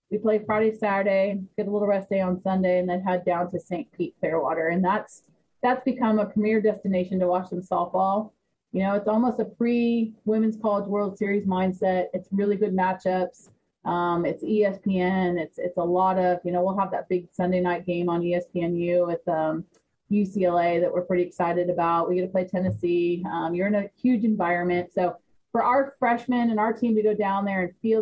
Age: 30-49